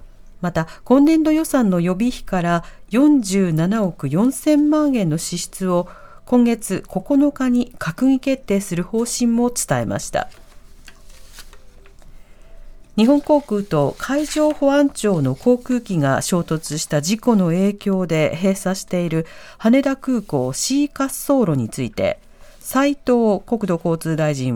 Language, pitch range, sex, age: Japanese, 170-265 Hz, female, 50-69